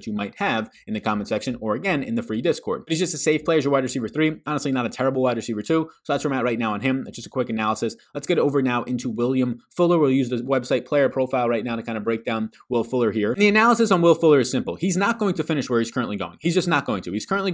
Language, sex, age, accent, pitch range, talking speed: English, male, 20-39, American, 115-160 Hz, 320 wpm